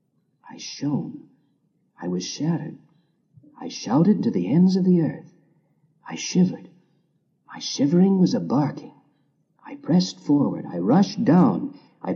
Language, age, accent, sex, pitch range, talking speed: English, 50-69, American, male, 150-245 Hz, 135 wpm